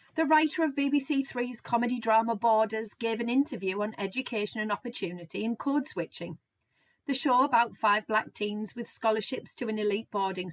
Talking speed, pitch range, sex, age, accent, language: 170 wpm, 180-240 Hz, female, 30-49, British, English